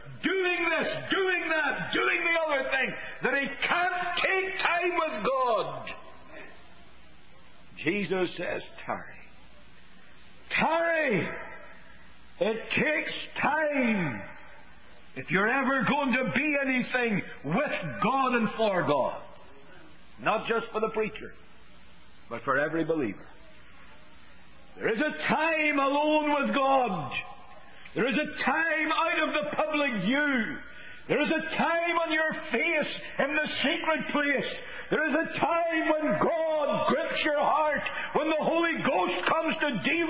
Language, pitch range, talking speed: English, 240-315 Hz, 130 wpm